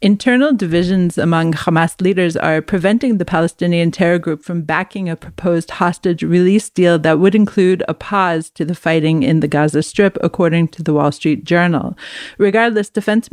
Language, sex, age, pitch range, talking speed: English, female, 40-59, 165-195 Hz, 170 wpm